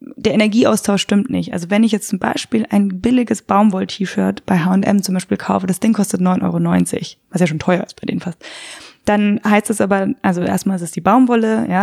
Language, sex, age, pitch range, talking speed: German, female, 20-39, 185-225 Hz, 215 wpm